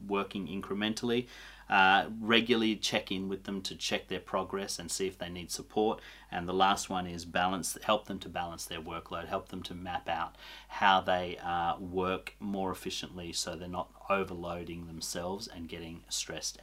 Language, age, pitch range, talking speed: English, 30-49, 90-115 Hz, 175 wpm